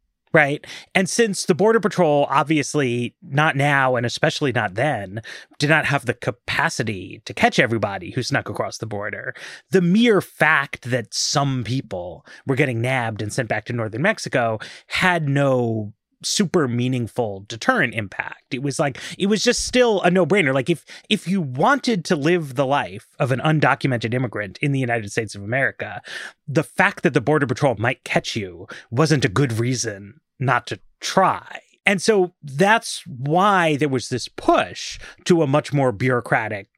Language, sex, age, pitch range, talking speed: English, male, 30-49, 120-170 Hz, 170 wpm